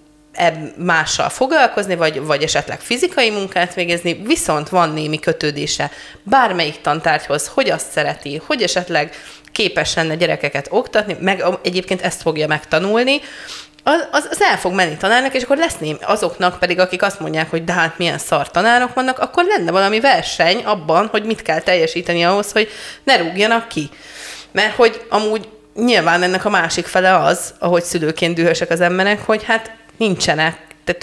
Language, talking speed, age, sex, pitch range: Hungarian, 160 wpm, 20-39, female, 165-220 Hz